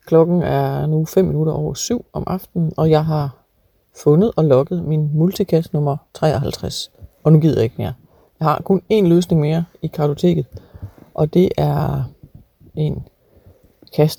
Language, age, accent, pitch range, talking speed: Danish, 40-59, native, 130-170 Hz, 160 wpm